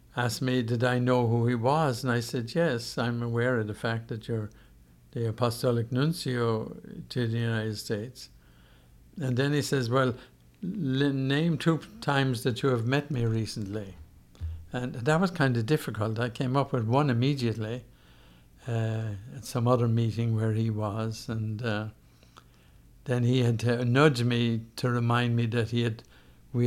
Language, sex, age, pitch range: English, male, 60-79, 110-125 Hz